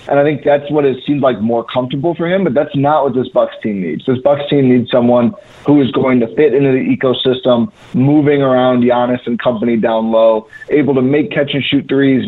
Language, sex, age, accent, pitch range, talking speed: English, male, 30-49, American, 125-150 Hz, 220 wpm